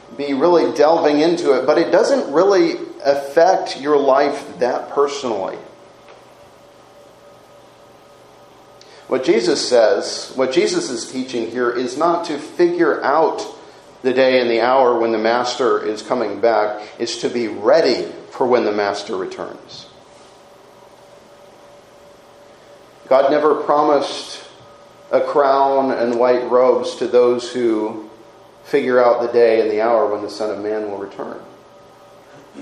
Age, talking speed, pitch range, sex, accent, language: 40-59, 130 wpm, 120-195 Hz, male, American, English